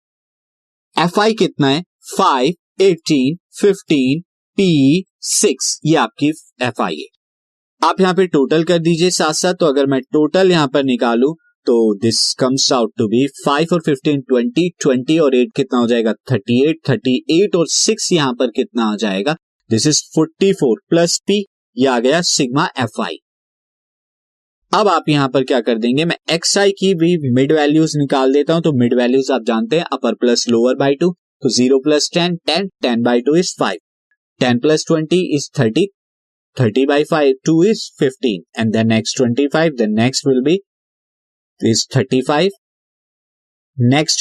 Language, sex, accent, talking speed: Hindi, male, native, 145 wpm